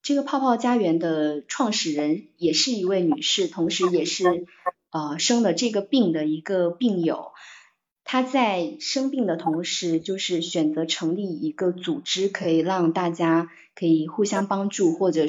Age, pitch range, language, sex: 20-39, 165-235 Hz, Chinese, female